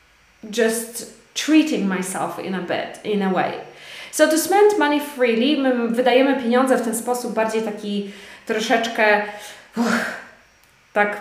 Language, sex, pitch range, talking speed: Polish, female, 210-280 Hz, 135 wpm